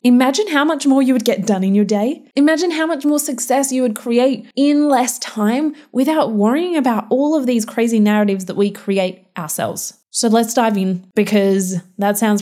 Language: English